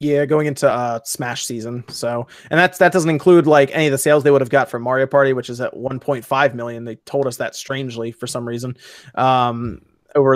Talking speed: 225 wpm